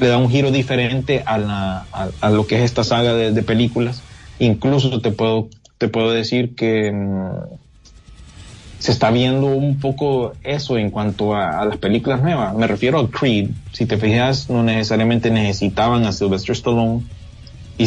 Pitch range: 110-130 Hz